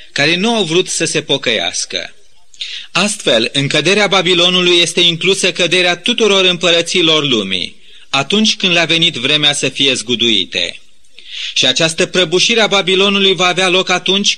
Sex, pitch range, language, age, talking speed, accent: male, 160-200 Hz, Romanian, 30-49, 140 wpm, native